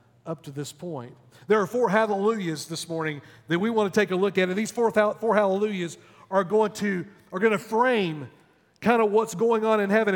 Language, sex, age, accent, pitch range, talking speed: English, male, 50-69, American, 175-225 Hz, 205 wpm